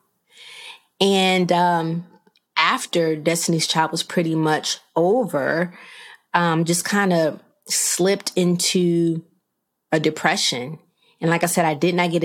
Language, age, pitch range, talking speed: English, 30-49, 155-210 Hz, 120 wpm